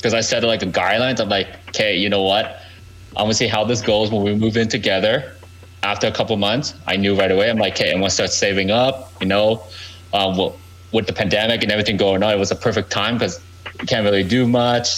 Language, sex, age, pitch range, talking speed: English, male, 20-39, 95-120 Hz, 250 wpm